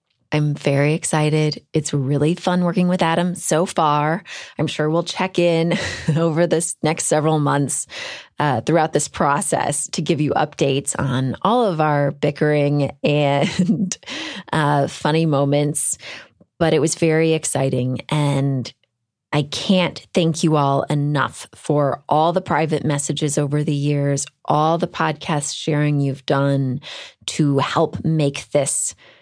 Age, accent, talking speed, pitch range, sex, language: 30-49, American, 140 wpm, 145-165 Hz, female, English